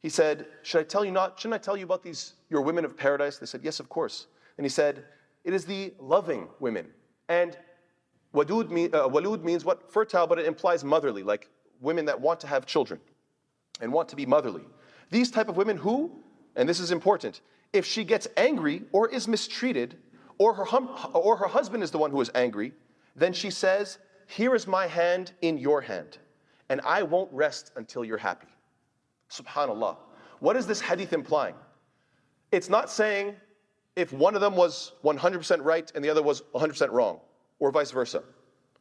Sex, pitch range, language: male, 165-210 Hz, English